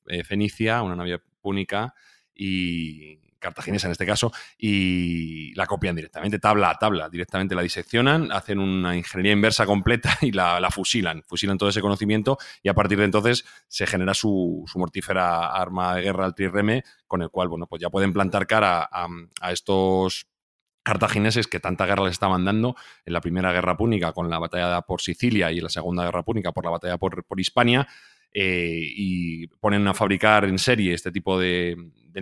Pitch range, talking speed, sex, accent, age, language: 90-105 Hz, 185 wpm, male, Spanish, 30-49, Spanish